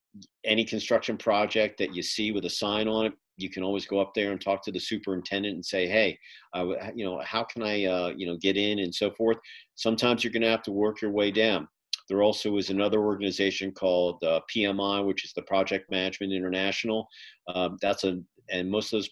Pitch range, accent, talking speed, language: 95-115 Hz, American, 215 wpm, English